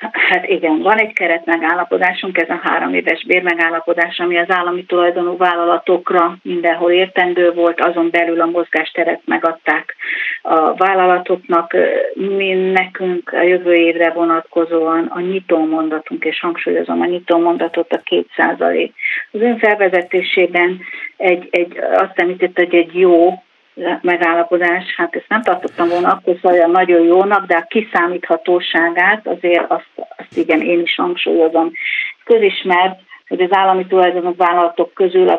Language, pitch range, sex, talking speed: Hungarian, 170-190 Hz, female, 135 wpm